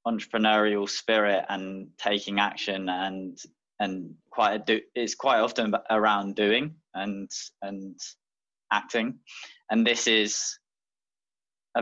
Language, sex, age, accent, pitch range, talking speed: English, male, 20-39, British, 95-105 Hz, 110 wpm